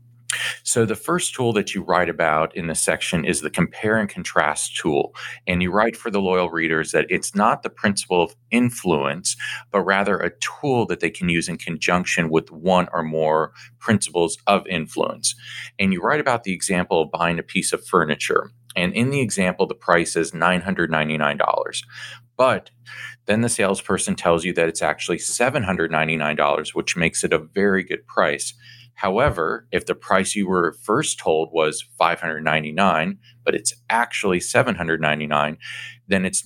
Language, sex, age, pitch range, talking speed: English, male, 40-59, 85-115 Hz, 165 wpm